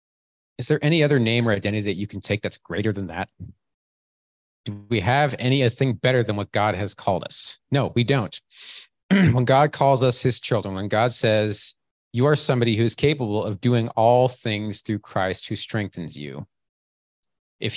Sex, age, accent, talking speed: male, 30-49, American, 180 wpm